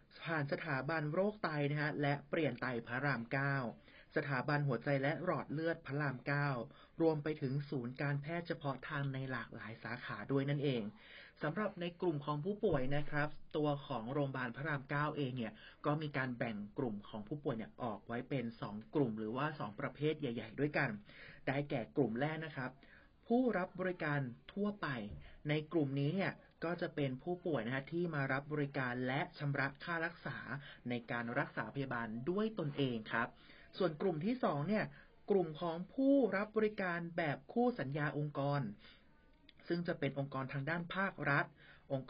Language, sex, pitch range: Thai, male, 130-160 Hz